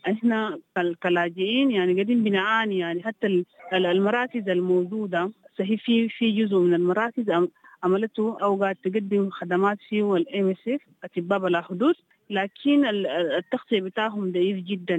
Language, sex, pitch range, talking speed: English, female, 180-220 Hz, 115 wpm